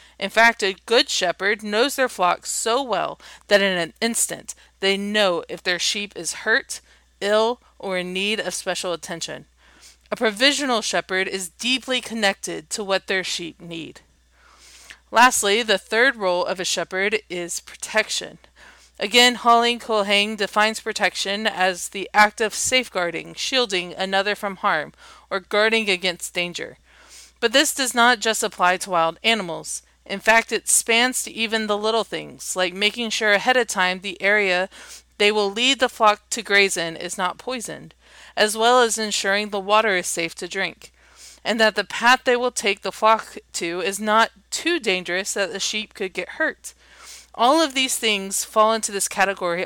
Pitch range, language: 185-225 Hz, English